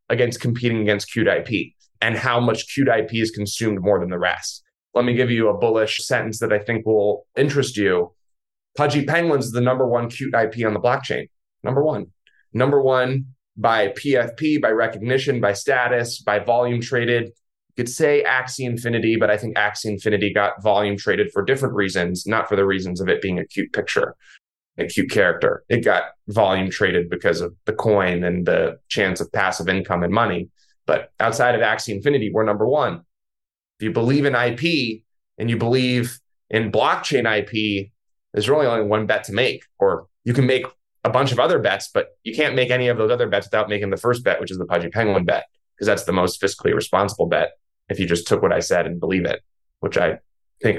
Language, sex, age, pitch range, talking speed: English, male, 20-39, 105-125 Hz, 205 wpm